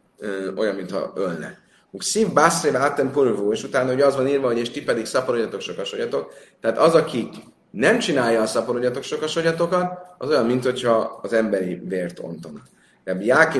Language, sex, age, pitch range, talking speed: Hungarian, male, 30-49, 115-170 Hz, 145 wpm